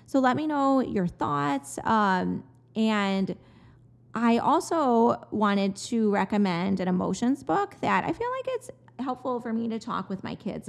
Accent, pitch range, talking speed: American, 185-230 Hz, 165 wpm